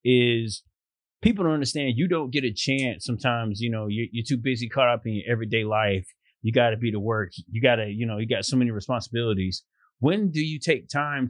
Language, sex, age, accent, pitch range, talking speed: English, male, 30-49, American, 105-125 Hz, 230 wpm